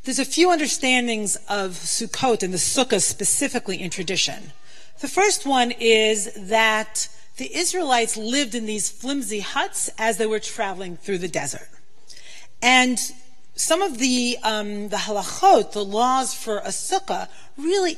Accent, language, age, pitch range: American, English, 40-59, 210-270 Hz